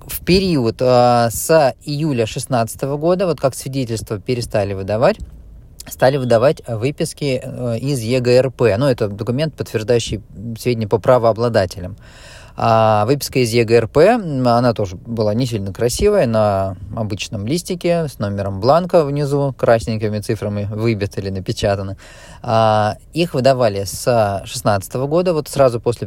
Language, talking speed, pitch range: Russian, 125 wpm, 105-130 Hz